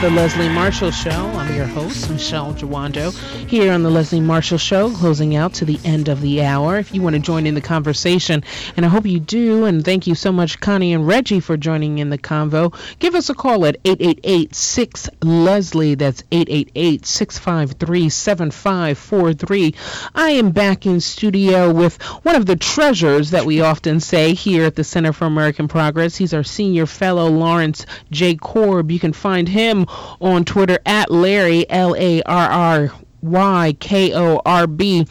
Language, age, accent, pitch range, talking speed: English, 40-59, American, 155-190 Hz, 165 wpm